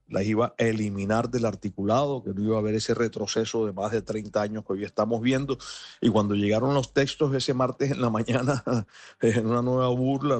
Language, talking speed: Spanish, 210 wpm